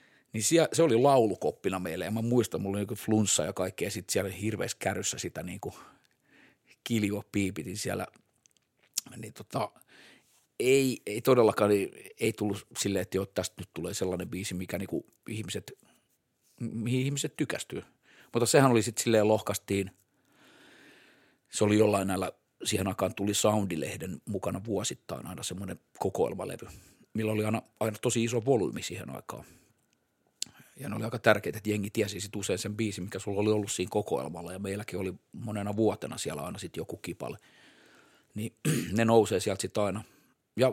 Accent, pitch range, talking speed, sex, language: native, 100-115 Hz, 160 wpm, male, Finnish